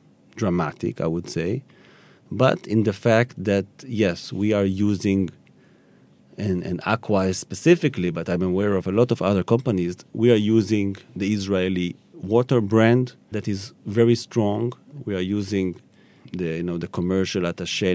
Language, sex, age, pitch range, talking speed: English, male, 40-59, 90-115 Hz, 155 wpm